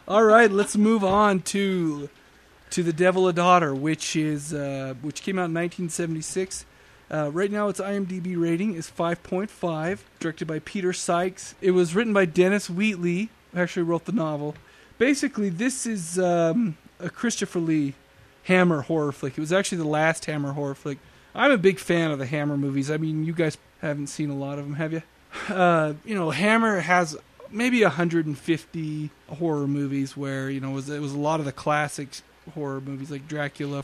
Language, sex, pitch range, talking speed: English, male, 145-185 Hz, 185 wpm